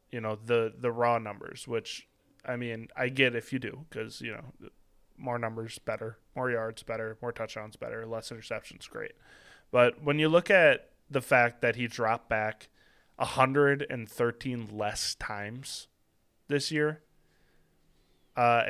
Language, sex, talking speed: English, male, 150 wpm